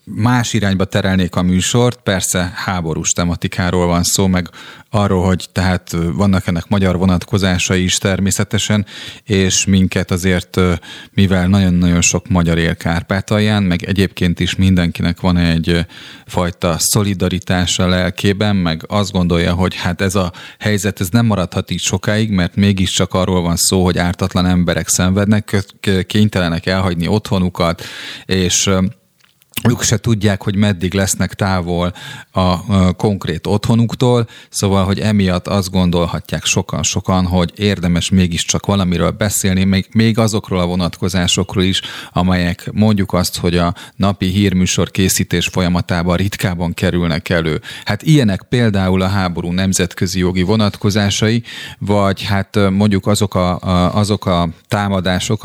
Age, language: 30-49, Hungarian